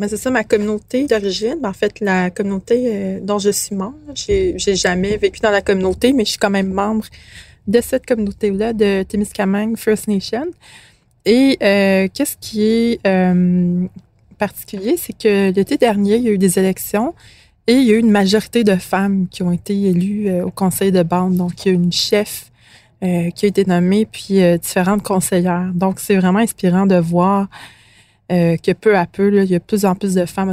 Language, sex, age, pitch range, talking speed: French, female, 20-39, 180-210 Hz, 215 wpm